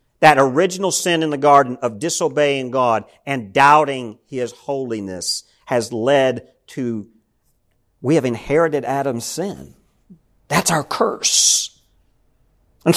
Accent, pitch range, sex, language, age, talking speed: American, 135-195 Hz, male, English, 50-69, 115 wpm